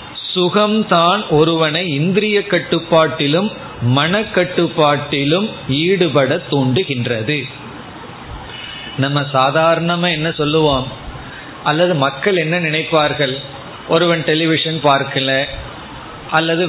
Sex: male